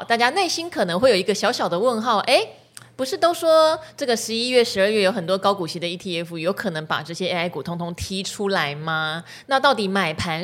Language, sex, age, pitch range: Chinese, female, 20-39, 175-240 Hz